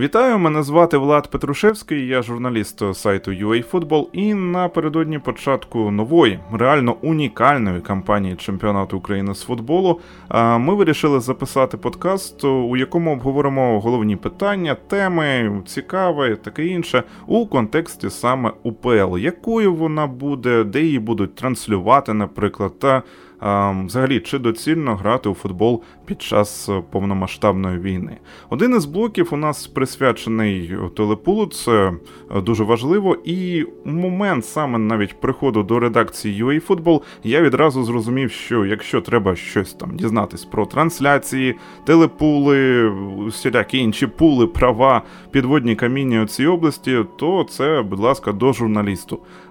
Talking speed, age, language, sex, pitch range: 125 wpm, 20-39, Ukrainian, male, 105-155 Hz